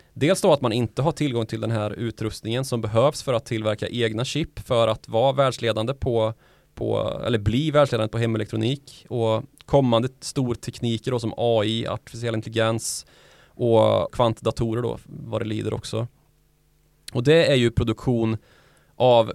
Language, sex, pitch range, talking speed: Swedish, male, 110-135 Hz, 155 wpm